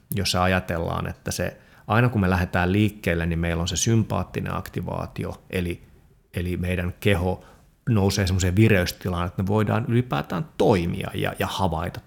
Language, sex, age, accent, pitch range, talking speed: Finnish, male, 30-49, native, 90-105 Hz, 150 wpm